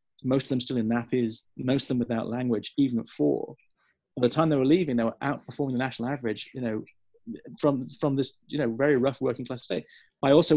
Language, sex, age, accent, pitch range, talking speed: English, male, 30-49, British, 120-155 Hz, 225 wpm